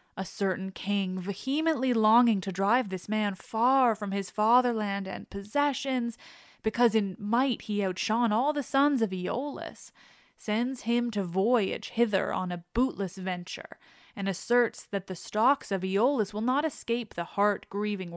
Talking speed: 150 wpm